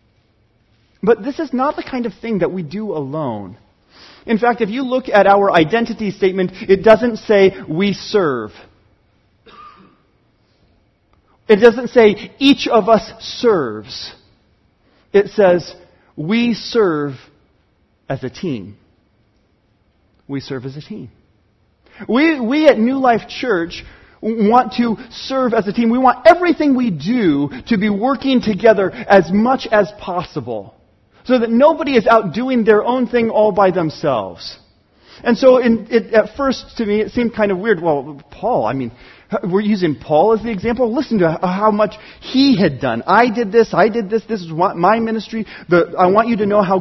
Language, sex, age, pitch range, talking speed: English, male, 30-49, 150-235 Hz, 165 wpm